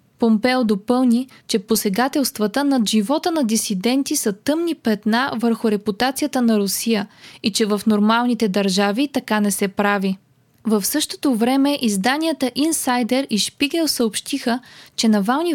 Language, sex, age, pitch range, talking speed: Bulgarian, female, 20-39, 215-275 Hz, 130 wpm